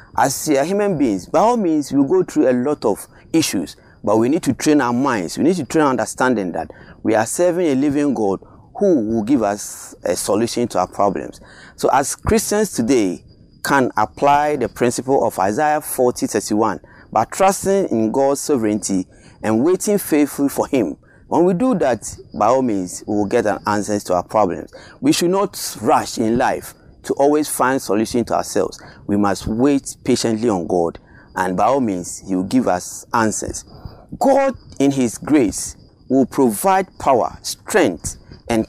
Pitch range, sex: 105-165 Hz, male